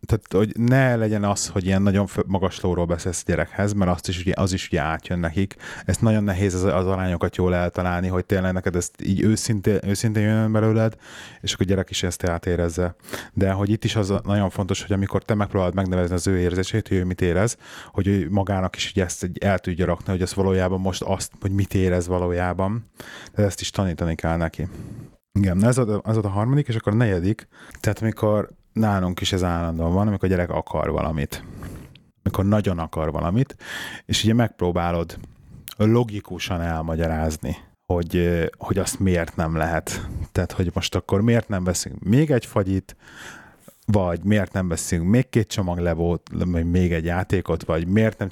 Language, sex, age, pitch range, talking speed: Hungarian, male, 30-49, 90-105 Hz, 185 wpm